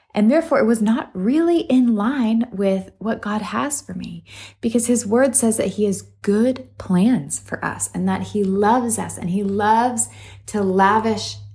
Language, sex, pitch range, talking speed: English, female, 170-235 Hz, 180 wpm